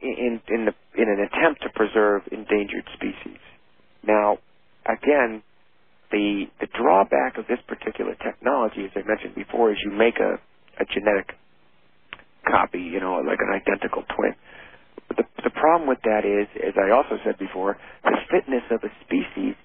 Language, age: English, 50-69